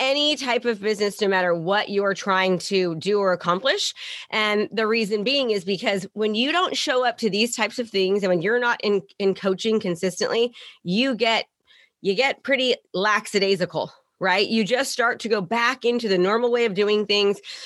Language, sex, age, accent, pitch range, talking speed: English, female, 30-49, American, 195-245 Hz, 195 wpm